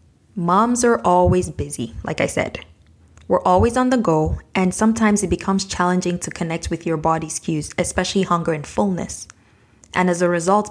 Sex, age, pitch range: female, 20-39, 155-180 Hz